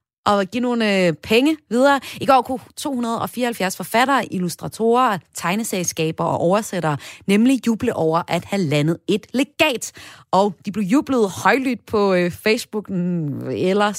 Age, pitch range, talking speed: 30-49, 165-230 Hz, 130 wpm